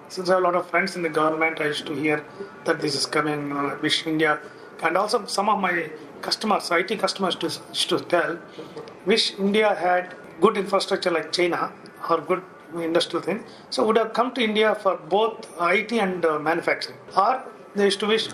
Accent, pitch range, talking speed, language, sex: Indian, 160-195 Hz, 195 wpm, English, male